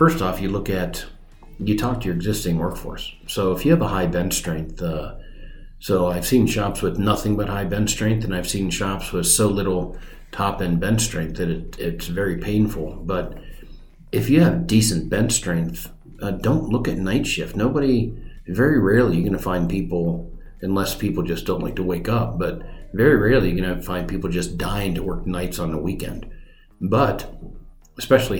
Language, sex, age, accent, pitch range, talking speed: English, male, 50-69, American, 90-110 Hz, 195 wpm